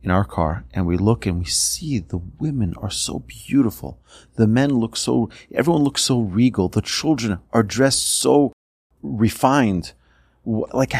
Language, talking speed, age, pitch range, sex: English, 160 wpm, 40-59, 90-120 Hz, male